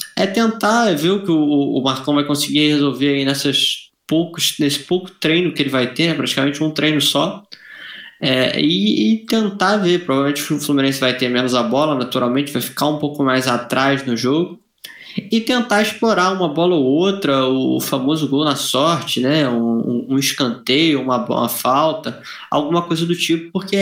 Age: 20-39